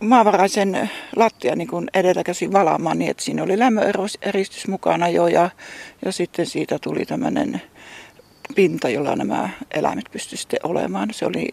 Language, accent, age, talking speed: Finnish, native, 60-79, 135 wpm